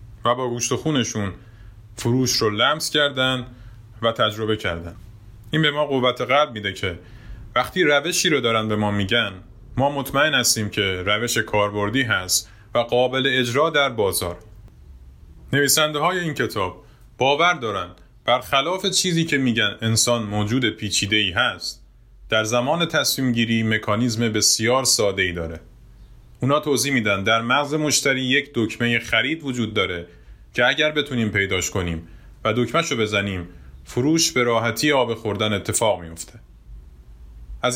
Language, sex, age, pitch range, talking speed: Persian, male, 30-49, 105-135 Hz, 140 wpm